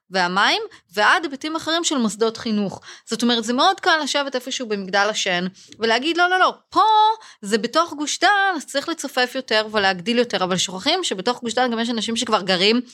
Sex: female